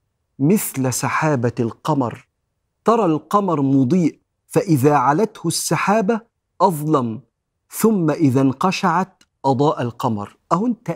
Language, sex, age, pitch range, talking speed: Arabic, male, 40-59, 125-170 Hz, 95 wpm